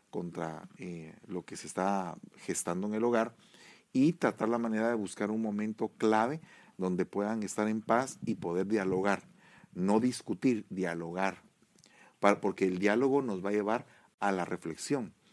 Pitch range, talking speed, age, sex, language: 100-140 Hz, 160 wpm, 40-59, male, English